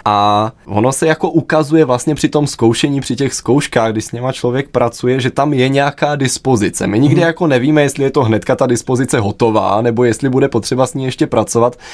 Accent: native